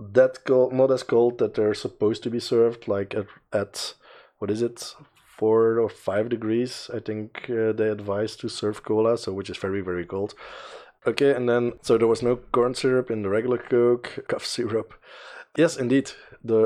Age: 20-39